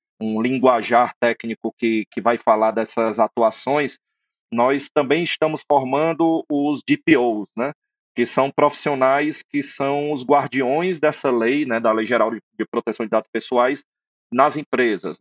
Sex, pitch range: male, 125-155 Hz